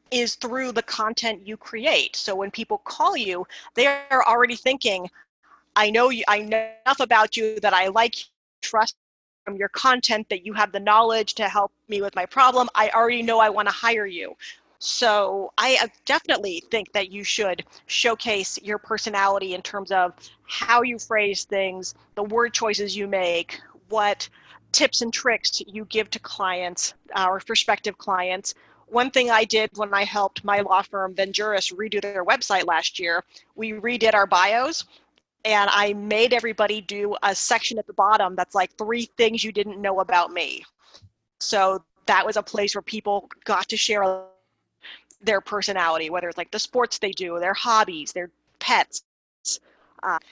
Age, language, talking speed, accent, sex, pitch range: 40-59, English, 175 wpm, American, female, 195-230 Hz